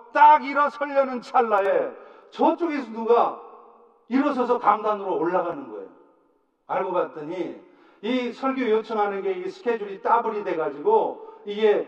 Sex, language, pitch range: male, Korean, 205-335 Hz